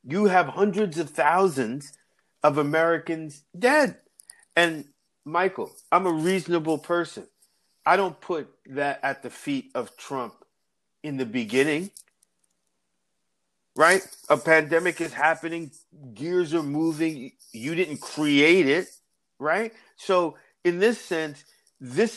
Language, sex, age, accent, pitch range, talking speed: English, male, 50-69, American, 135-170 Hz, 120 wpm